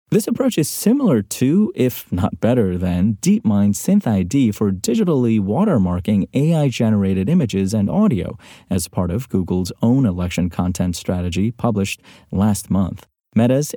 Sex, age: male, 30-49